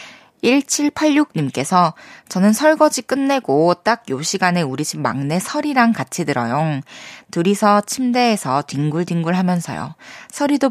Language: Korean